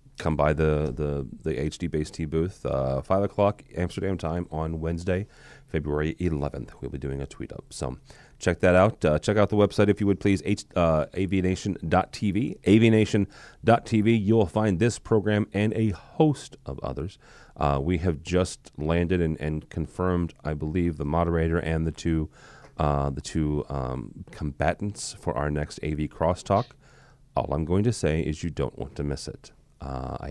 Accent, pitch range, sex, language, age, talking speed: American, 75-105 Hz, male, English, 30-49, 180 wpm